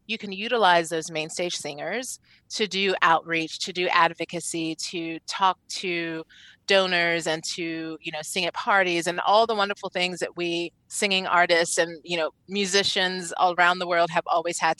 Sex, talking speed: female, 175 wpm